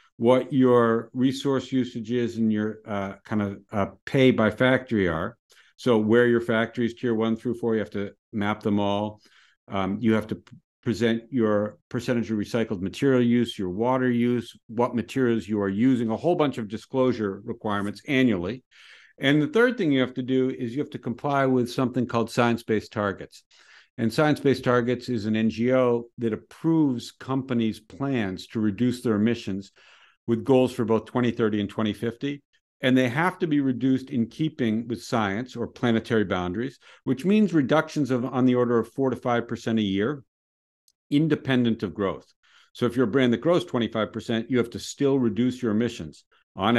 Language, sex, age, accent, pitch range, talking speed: English, male, 50-69, American, 105-130 Hz, 180 wpm